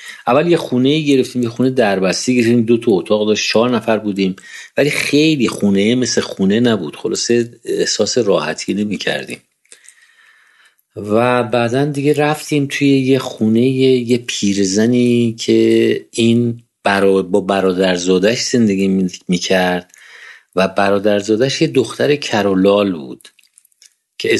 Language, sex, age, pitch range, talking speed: Persian, male, 50-69, 105-135 Hz, 120 wpm